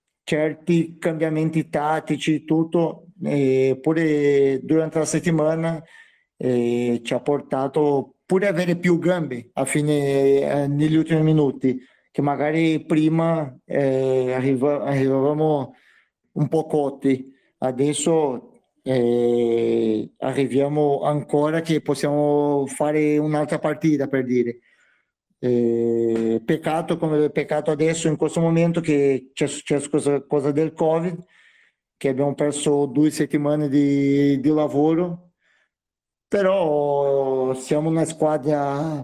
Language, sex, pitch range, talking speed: Italian, male, 135-160 Hz, 110 wpm